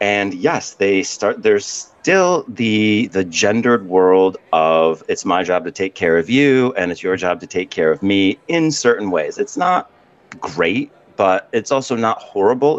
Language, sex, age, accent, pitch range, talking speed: English, male, 40-59, American, 90-120 Hz, 185 wpm